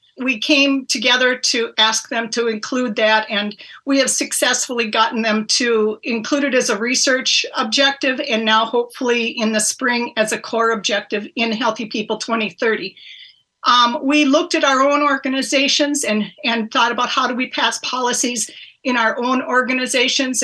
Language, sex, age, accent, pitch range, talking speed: English, female, 50-69, American, 220-265 Hz, 165 wpm